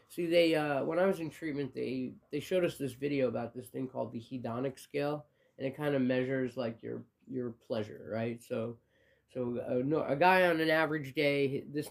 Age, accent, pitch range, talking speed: 20-39, American, 125-165 Hz, 210 wpm